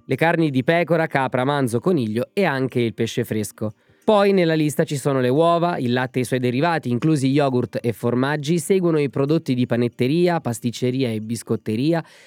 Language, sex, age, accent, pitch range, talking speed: Italian, male, 20-39, native, 120-170 Hz, 180 wpm